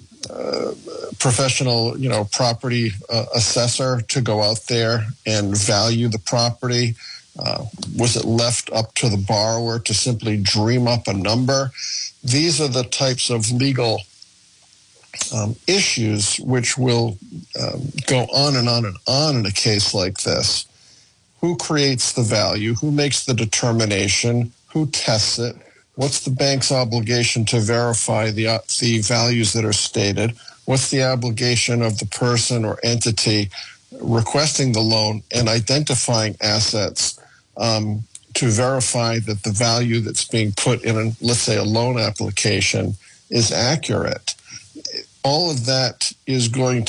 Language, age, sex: English, 50-69, male